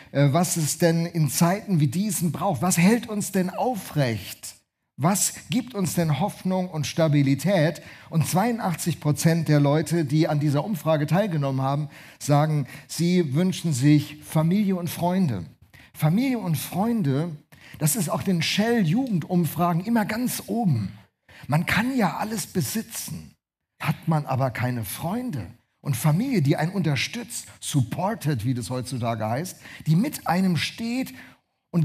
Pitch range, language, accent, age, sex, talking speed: 145-190 Hz, German, German, 50-69, male, 140 wpm